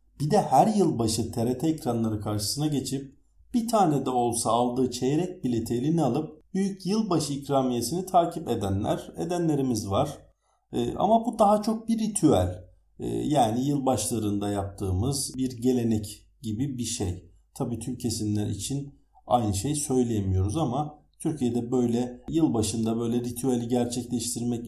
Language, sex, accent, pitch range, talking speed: Turkish, male, native, 105-145 Hz, 130 wpm